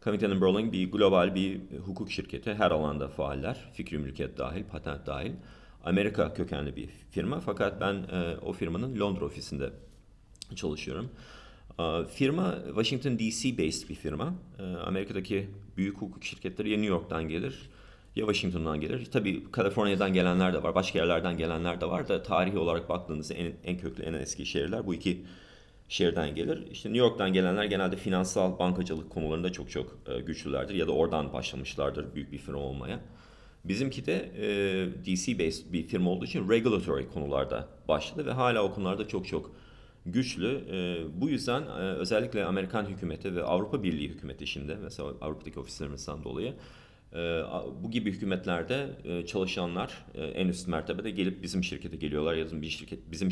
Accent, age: native, 40-59